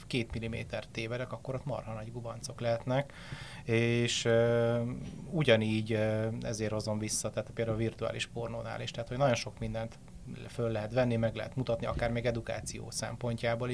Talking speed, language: 160 wpm, Hungarian